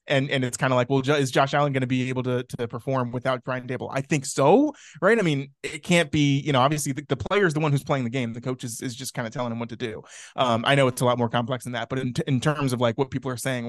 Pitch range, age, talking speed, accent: 130-165 Hz, 20-39, 330 wpm, American